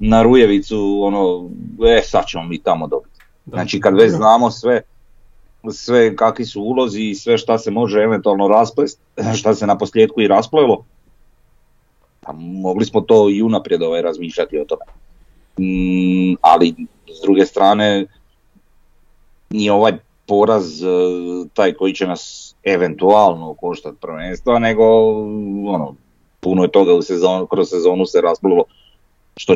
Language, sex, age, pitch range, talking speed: Croatian, male, 40-59, 80-115 Hz, 135 wpm